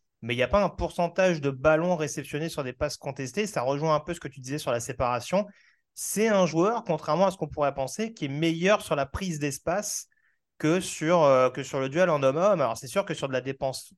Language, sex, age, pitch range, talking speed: French, male, 30-49, 130-165 Hz, 255 wpm